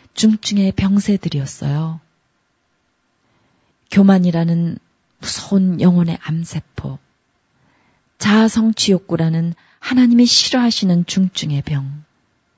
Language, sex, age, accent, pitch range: Korean, female, 40-59, native, 160-200 Hz